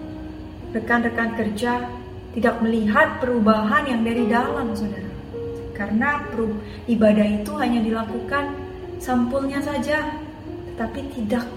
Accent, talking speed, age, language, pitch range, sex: native, 100 wpm, 20-39, Indonesian, 210-275 Hz, female